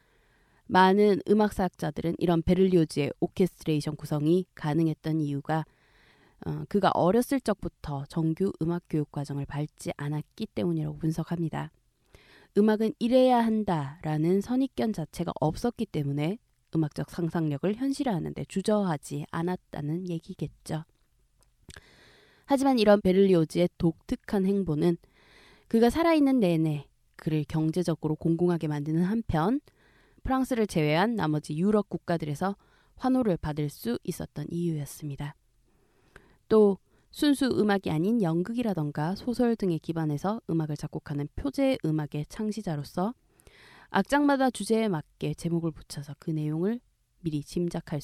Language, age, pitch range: Korean, 20-39, 150-205 Hz